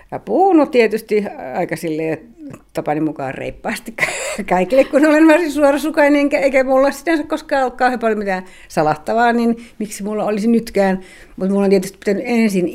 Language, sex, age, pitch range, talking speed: Finnish, female, 60-79, 145-230 Hz, 155 wpm